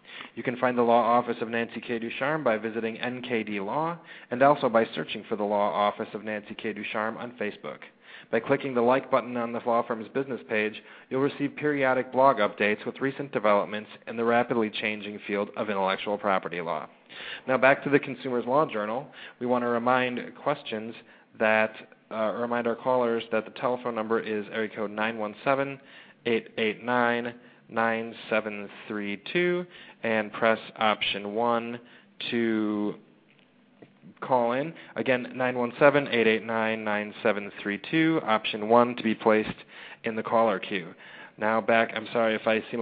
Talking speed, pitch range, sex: 165 wpm, 110-125 Hz, male